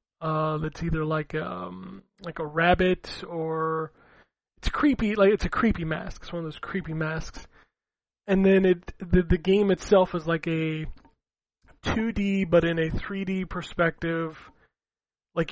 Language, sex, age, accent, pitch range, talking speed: English, male, 20-39, American, 165-195 Hz, 150 wpm